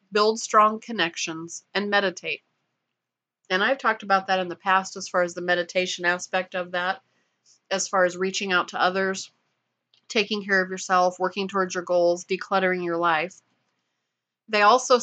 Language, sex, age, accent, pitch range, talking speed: English, female, 30-49, American, 180-215 Hz, 165 wpm